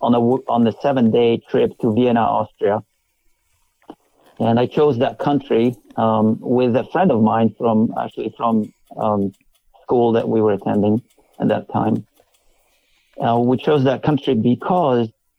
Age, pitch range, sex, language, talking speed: 50-69, 115-135 Hz, male, English, 150 wpm